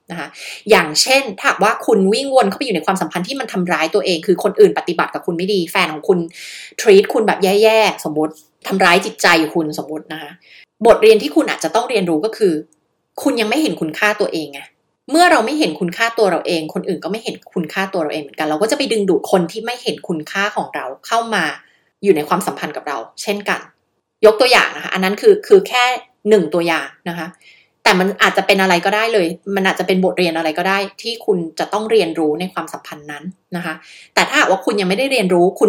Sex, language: female, Thai